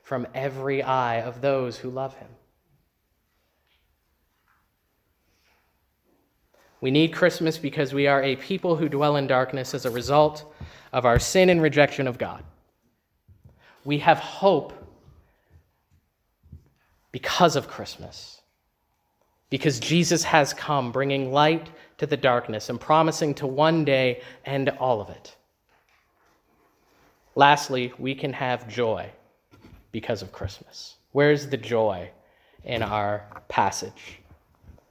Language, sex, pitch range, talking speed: English, male, 120-150 Hz, 115 wpm